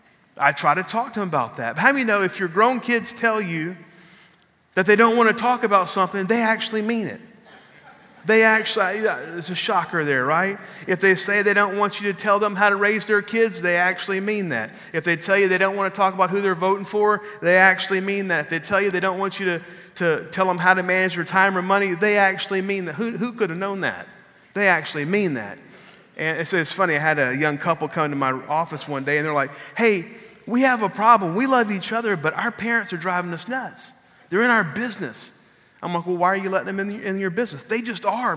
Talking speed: 255 wpm